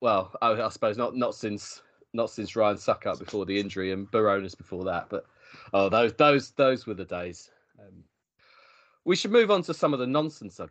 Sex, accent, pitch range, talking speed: male, British, 100-140 Hz, 205 wpm